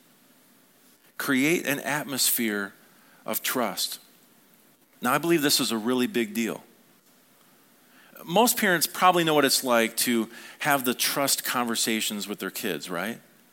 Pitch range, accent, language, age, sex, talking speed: 120-175 Hz, American, English, 40-59, male, 135 wpm